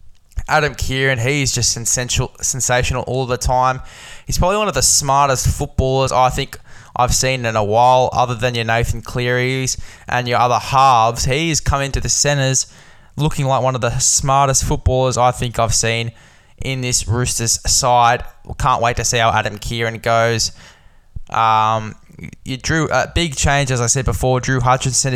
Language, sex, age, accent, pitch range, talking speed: English, male, 10-29, Australian, 115-130 Hz, 170 wpm